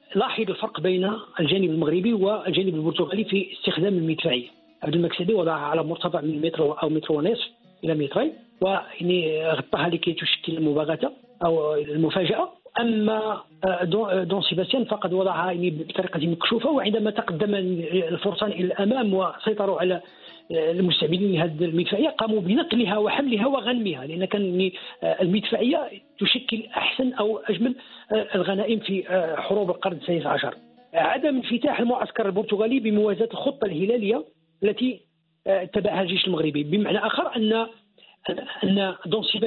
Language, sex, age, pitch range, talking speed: Arabic, male, 50-69, 180-230 Hz, 115 wpm